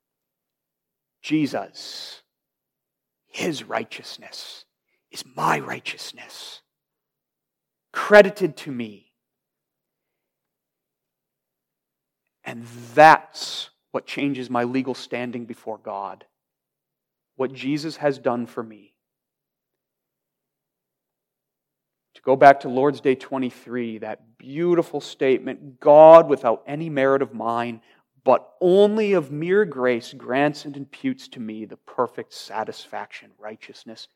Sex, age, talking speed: male, 40-59, 95 wpm